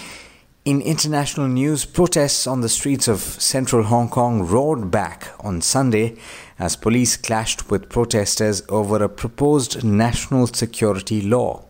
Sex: male